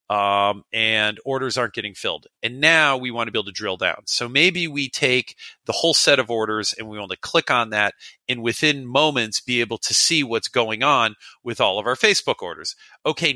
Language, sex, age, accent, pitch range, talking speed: English, male, 40-59, American, 110-145 Hz, 220 wpm